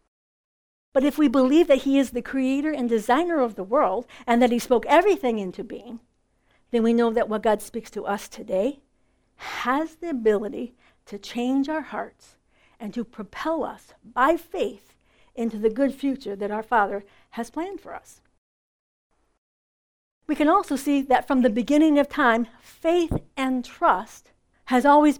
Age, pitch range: 60-79, 230-320 Hz